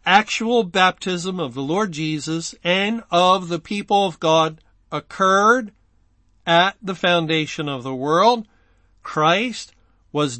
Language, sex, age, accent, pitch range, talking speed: English, male, 50-69, American, 140-175 Hz, 120 wpm